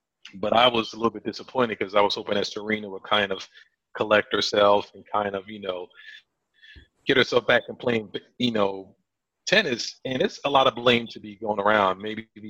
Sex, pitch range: male, 100-115 Hz